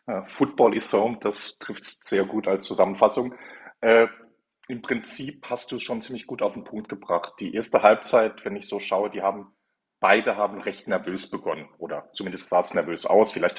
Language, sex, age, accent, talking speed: German, male, 40-59, German, 190 wpm